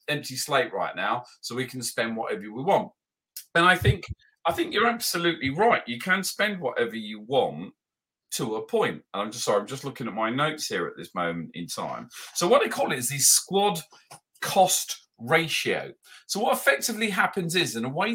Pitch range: 125-190 Hz